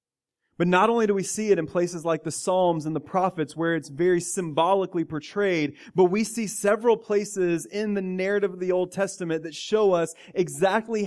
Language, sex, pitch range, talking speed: English, male, 150-185 Hz, 195 wpm